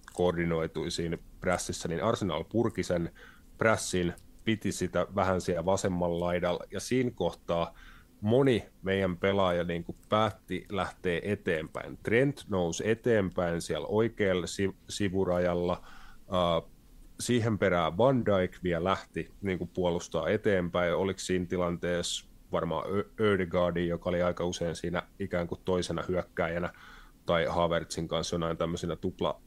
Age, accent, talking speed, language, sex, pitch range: 30-49, native, 130 wpm, Finnish, male, 85-100 Hz